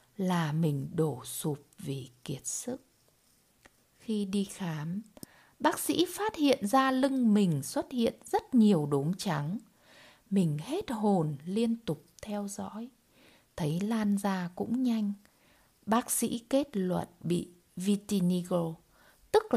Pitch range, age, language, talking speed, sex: 170-245 Hz, 20-39, Vietnamese, 130 wpm, female